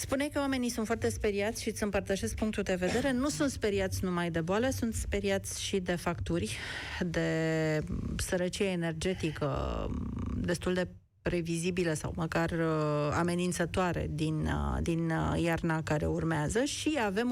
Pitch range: 160-225 Hz